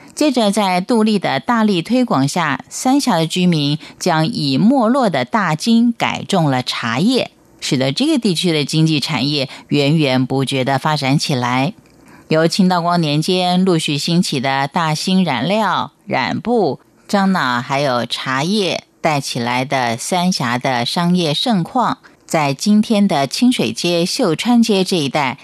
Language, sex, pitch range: Chinese, female, 140-200 Hz